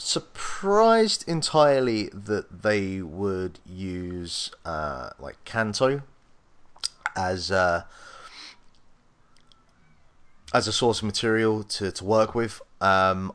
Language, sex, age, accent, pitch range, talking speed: English, male, 30-49, British, 90-115 Hz, 95 wpm